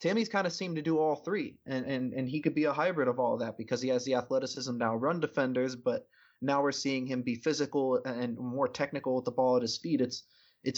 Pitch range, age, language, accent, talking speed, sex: 125-145 Hz, 20-39, English, American, 255 wpm, male